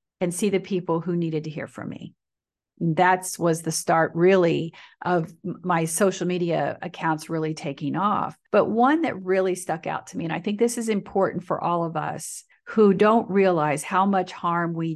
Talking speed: 195 wpm